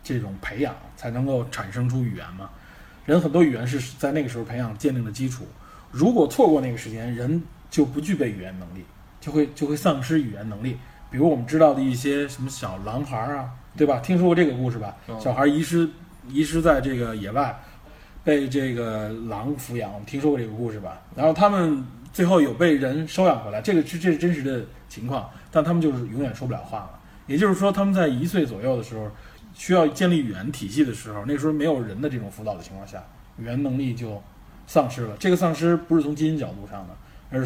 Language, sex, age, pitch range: Chinese, male, 20-39, 115-150 Hz